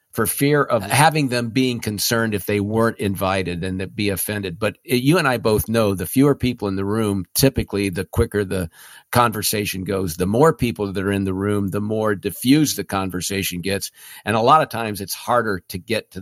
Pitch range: 100-120 Hz